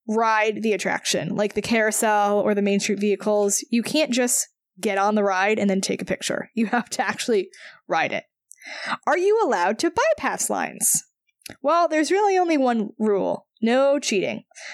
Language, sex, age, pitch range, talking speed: English, female, 10-29, 210-245 Hz, 175 wpm